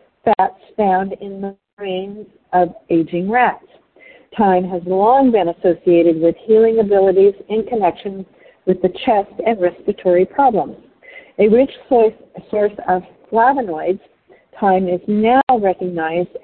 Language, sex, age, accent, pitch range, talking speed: English, female, 50-69, American, 180-245 Hz, 120 wpm